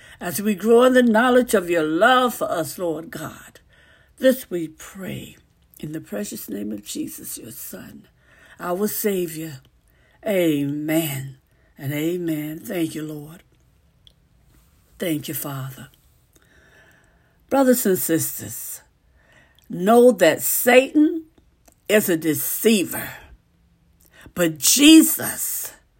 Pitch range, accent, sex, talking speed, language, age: 165-275 Hz, American, female, 105 wpm, English, 60-79